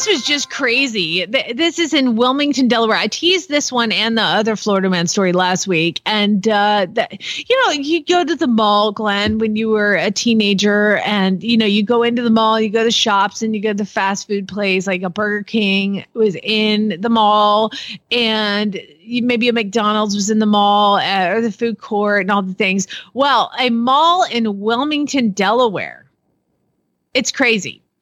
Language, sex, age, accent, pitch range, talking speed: English, female, 30-49, American, 205-275 Hz, 195 wpm